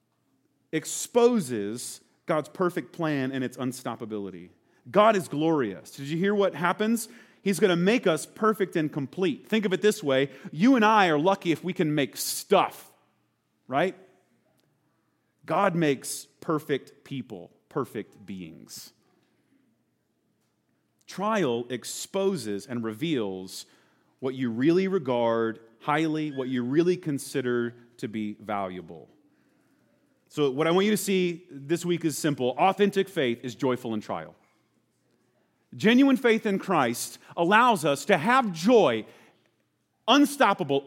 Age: 30-49